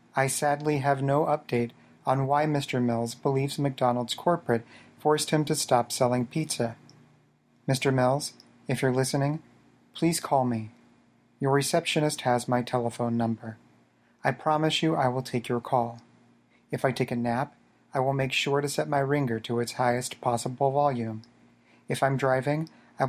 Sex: male